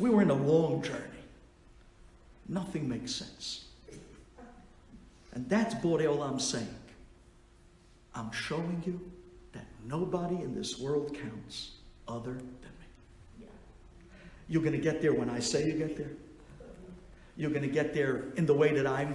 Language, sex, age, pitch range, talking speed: English, male, 50-69, 145-215 Hz, 145 wpm